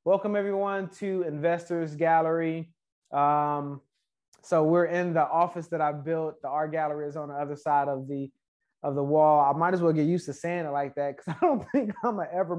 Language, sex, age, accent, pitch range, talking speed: English, male, 20-39, American, 145-170 Hz, 215 wpm